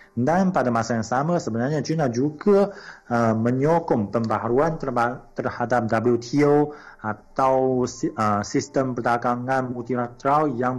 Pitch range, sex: 110-140 Hz, male